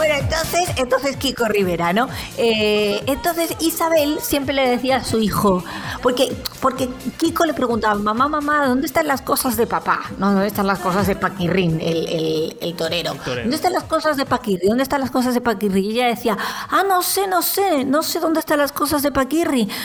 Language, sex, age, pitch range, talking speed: Spanish, female, 40-59, 210-280 Hz, 205 wpm